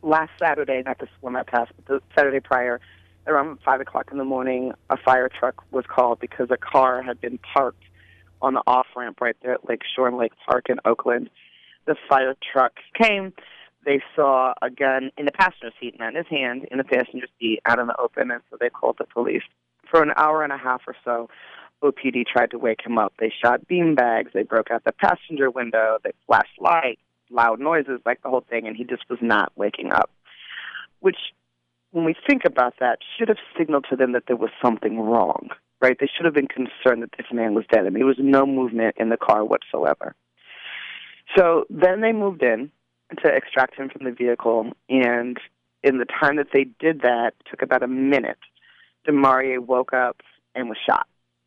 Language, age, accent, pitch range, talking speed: English, 30-49, American, 115-135 Hz, 205 wpm